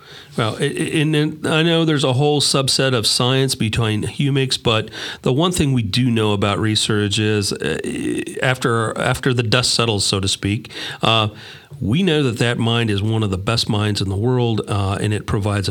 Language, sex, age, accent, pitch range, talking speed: English, male, 40-59, American, 105-130 Hz, 190 wpm